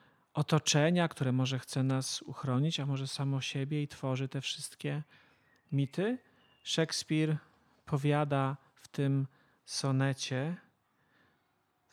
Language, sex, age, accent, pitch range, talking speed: Polish, male, 40-59, native, 130-155 Hz, 105 wpm